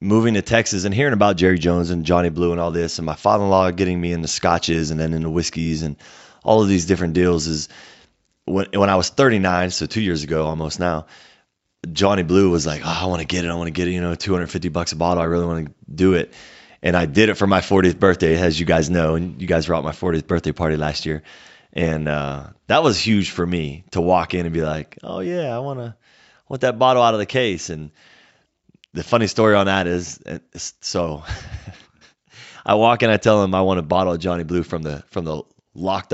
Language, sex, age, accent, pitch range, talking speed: English, male, 20-39, American, 85-105 Hz, 240 wpm